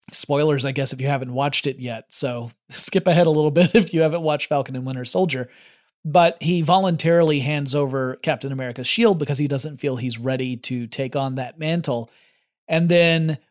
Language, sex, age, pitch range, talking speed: English, male, 30-49, 135-165 Hz, 195 wpm